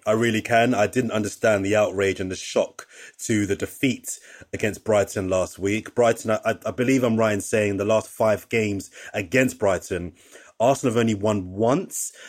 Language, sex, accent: English, male, British